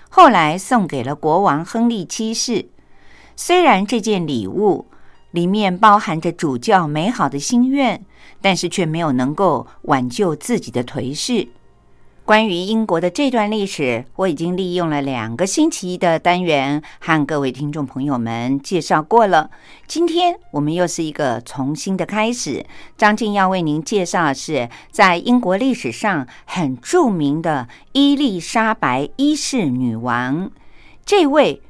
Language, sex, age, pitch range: Chinese, female, 50-69, 145-235 Hz